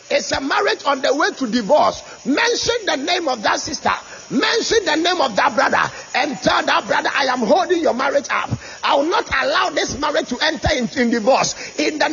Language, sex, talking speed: English, male, 215 wpm